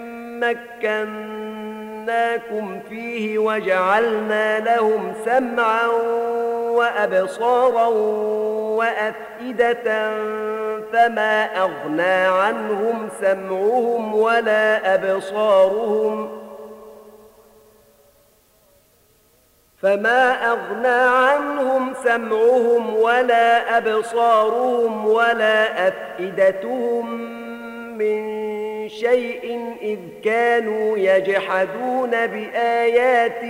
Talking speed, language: 50 wpm, Arabic